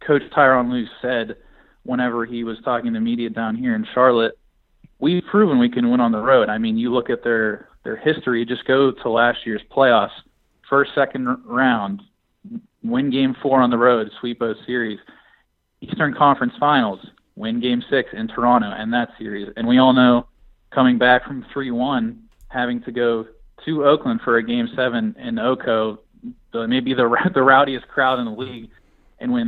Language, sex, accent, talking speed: English, male, American, 185 wpm